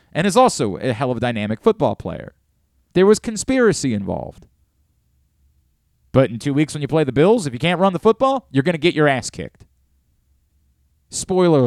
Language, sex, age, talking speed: English, male, 30-49, 190 wpm